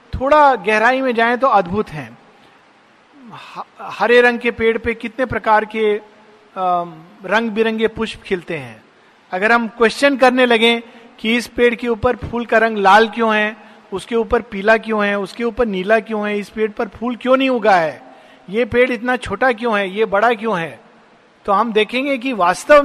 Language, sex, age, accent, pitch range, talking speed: Hindi, male, 50-69, native, 185-245 Hz, 180 wpm